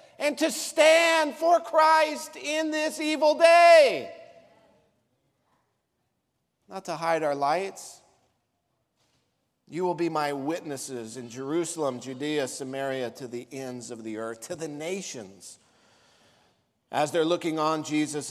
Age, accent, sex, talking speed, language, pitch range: 50-69, American, male, 120 wpm, English, 130-195 Hz